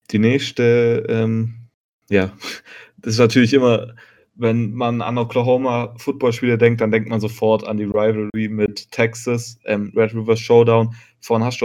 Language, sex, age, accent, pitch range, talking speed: German, male, 20-39, German, 110-120 Hz, 155 wpm